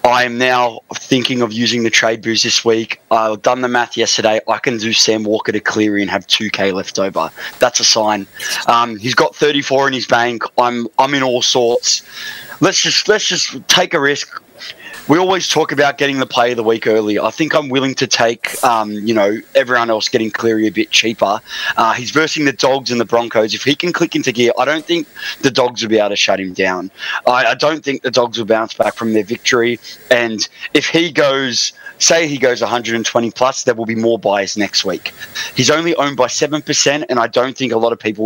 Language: English